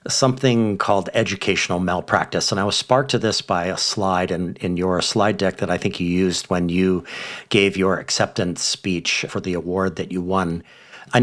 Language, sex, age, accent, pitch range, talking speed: English, male, 50-69, American, 95-115 Hz, 190 wpm